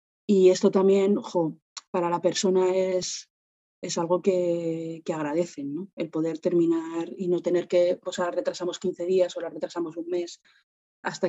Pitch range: 175-200 Hz